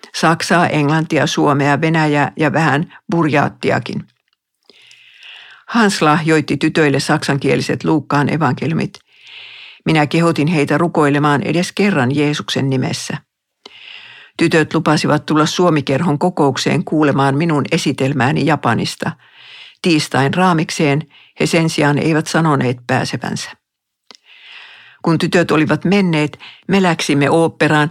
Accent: Finnish